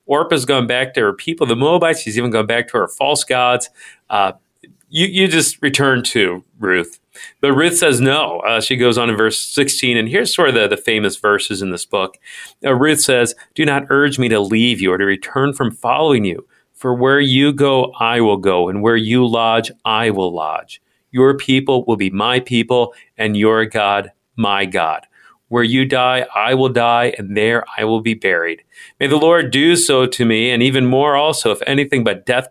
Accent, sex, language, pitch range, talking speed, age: American, male, English, 110-135 Hz, 210 wpm, 40-59